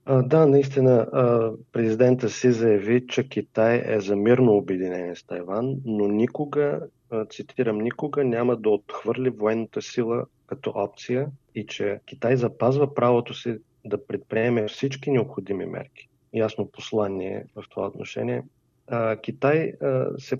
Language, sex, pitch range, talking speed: Bulgarian, male, 100-130 Hz, 125 wpm